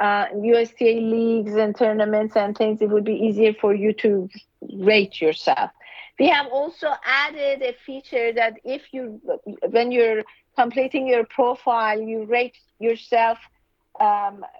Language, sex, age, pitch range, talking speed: English, female, 50-69, 220-265 Hz, 140 wpm